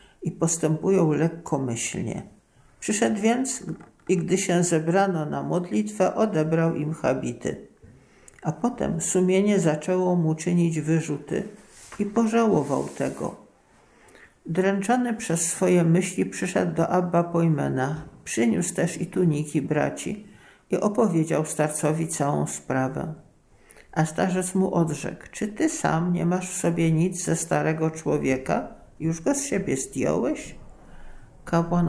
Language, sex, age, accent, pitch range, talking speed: Polish, male, 50-69, native, 155-195 Hz, 120 wpm